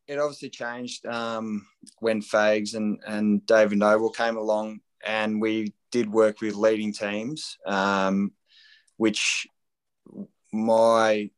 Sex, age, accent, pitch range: male, 20-39, Australian, 105-115 Hz